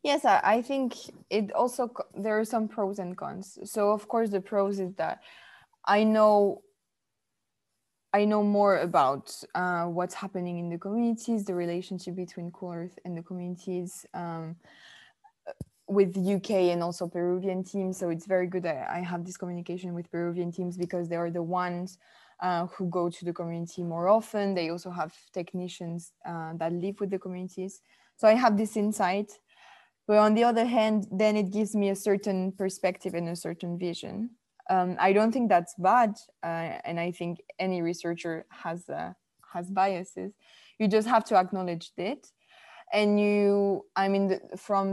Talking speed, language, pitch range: 170 wpm, English, 175-205 Hz